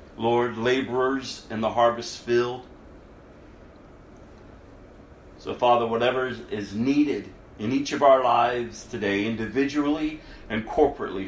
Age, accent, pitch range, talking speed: 50-69, American, 105-145 Hz, 105 wpm